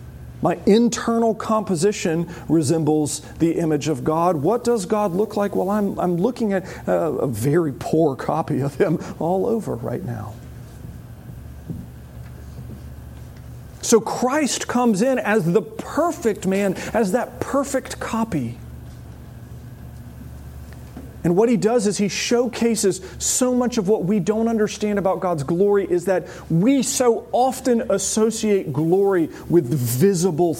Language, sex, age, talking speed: English, male, 40-59, 130 wpm